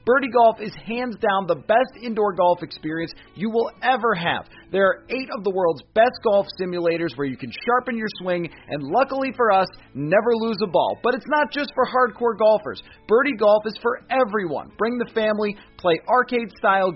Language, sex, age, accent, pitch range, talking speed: English, male, 30-49, American, 175-235 Hz, 190 wpm